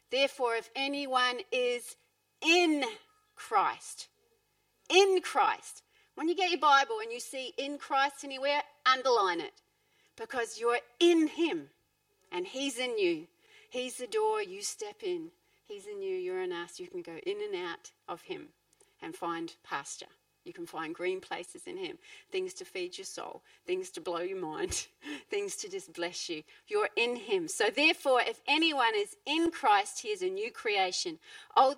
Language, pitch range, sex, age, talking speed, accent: English, 285-425 Hz, female, 40-59, 170 wpm, Australian